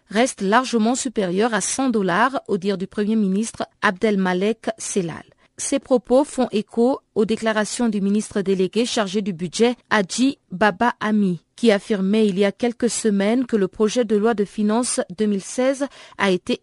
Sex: female